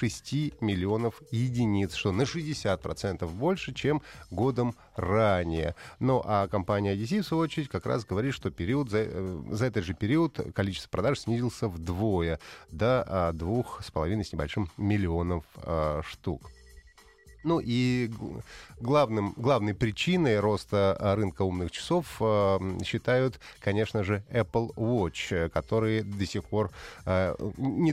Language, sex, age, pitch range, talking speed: Russian, male, 30-49, 95-120 Hz, 125 wpm